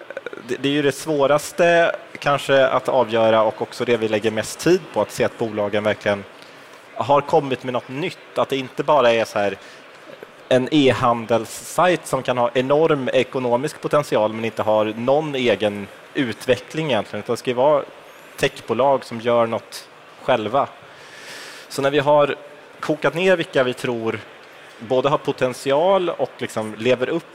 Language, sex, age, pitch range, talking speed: Swedish, male, 30-49, 115-145 Hz, 160 wpm